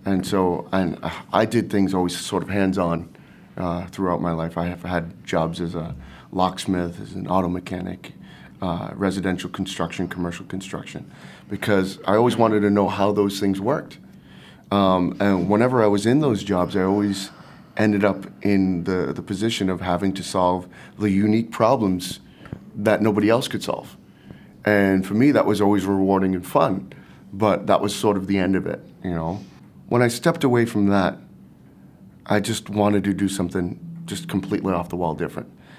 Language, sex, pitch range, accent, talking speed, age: English, male, 90-105 Hz, American, 175 wpm, 30-49